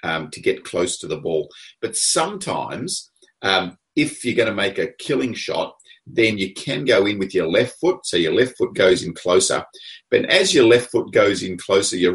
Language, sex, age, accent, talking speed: English, male, 30-49, Australian, 210 wpm